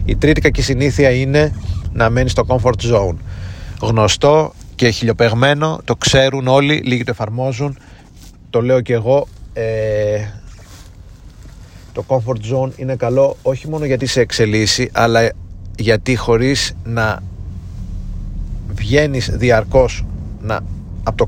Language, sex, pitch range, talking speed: Greek, male, 100-125 Hz, 120 wpm